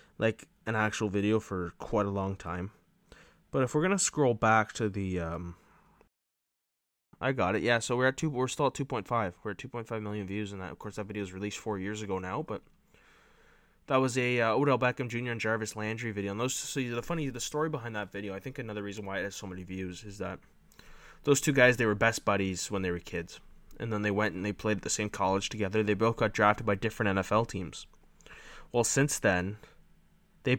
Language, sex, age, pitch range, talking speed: English, male, 20-39, 95-120 Hz, 235 wpm